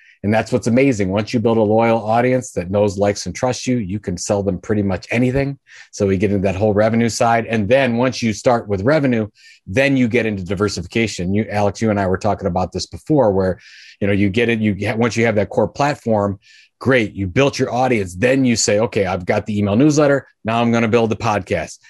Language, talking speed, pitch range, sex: English, 240 wpm, 105-125 Hz, male